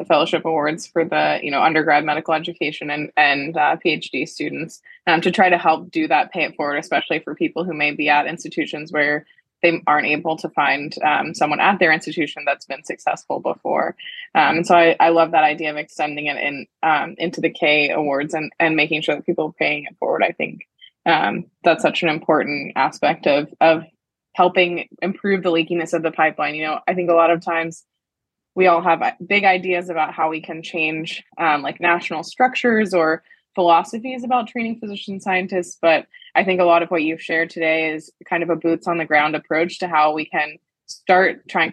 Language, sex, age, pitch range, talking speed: English, female, 20-39, 155-175 Hz, 210 wpm